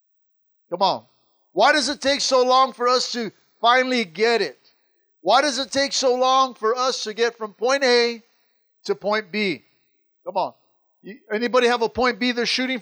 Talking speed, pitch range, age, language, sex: 185 wpm, 205-255 Hz, 50-69, English, male